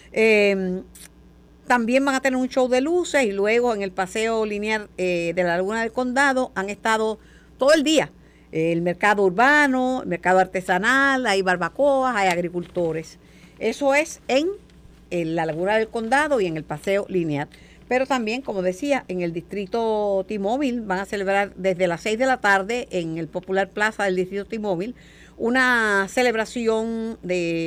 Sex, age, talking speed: female, 50-69, 165 wpm